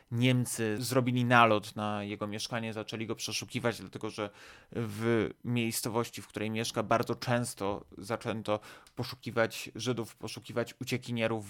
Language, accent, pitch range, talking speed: Polish, native, 110-125 Hz, 120 wpm